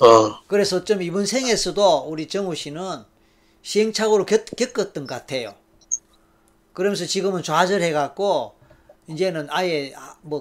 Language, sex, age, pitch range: Korean, male, 40-59, 145-185 Hz